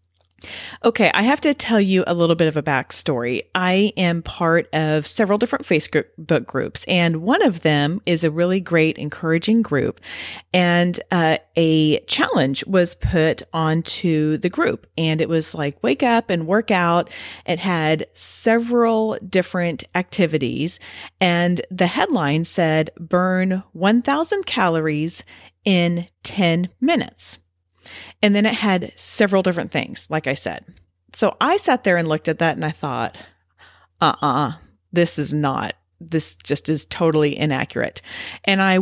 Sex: female